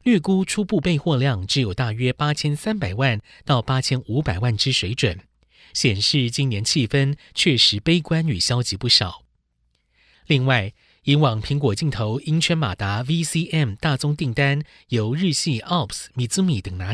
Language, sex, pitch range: Chinese, male, 110-150 Hz